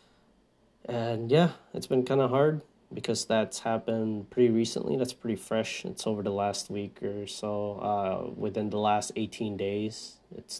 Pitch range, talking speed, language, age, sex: 105-130 Hz, 165 wpm, English, 20-39, male